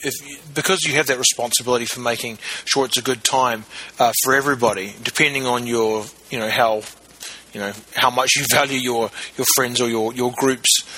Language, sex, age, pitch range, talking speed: English, male, 30-49, 120-145 Hz, 185 wpm